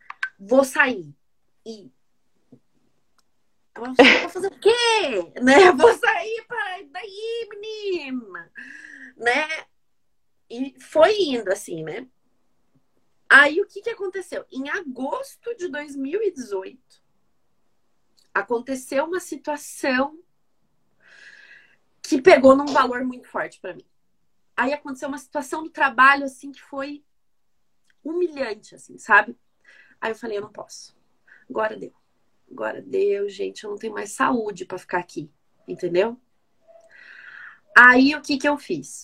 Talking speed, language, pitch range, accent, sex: 120 wpm, Portuguese, 225-365 Hz, Brazilian, female